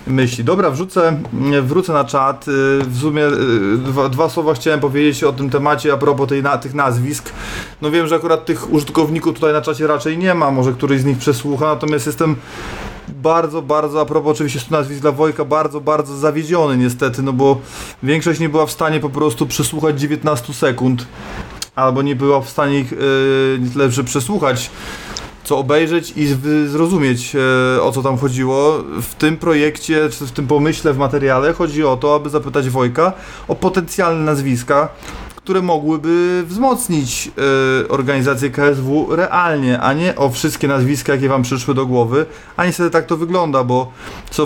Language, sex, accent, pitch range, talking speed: Polish, male, native, 140-160 Hz, 170 wpm